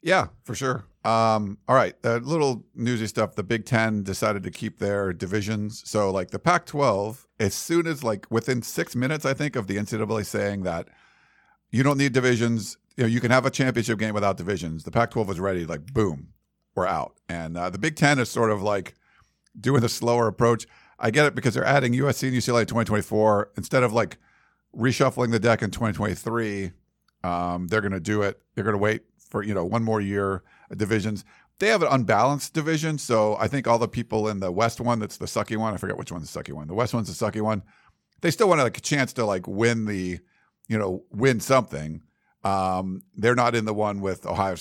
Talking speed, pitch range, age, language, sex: 215 wpm, 100-125 Hz, 50-69, English, male